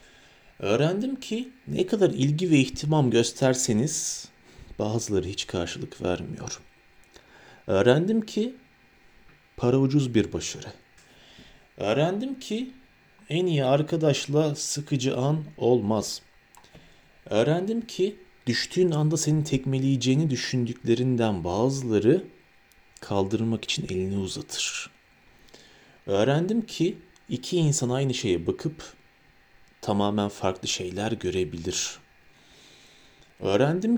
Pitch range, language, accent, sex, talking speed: 110-165 Hz, Turkish, native, male, 90 wpm